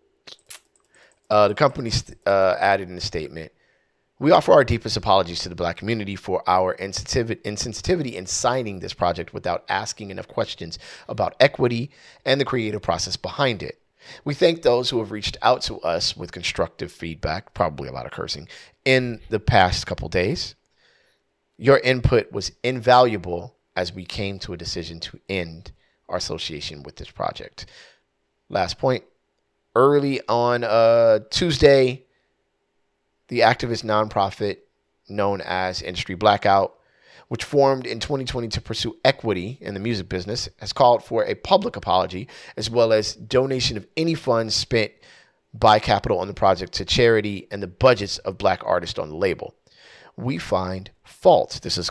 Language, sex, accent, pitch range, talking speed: English, male, American, 95-125 Hz, 155 wpm